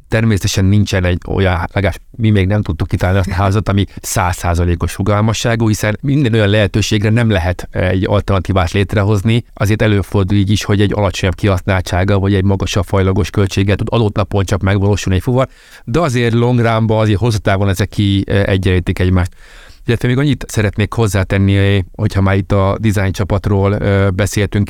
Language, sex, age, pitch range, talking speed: Hungarian, male, 30-49, 95-110 Hz, 155 wpm